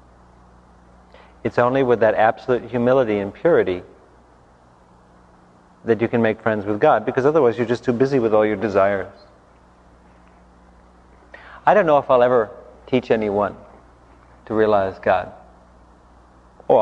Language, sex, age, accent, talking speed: English, male, 40-59, American, 130 wpm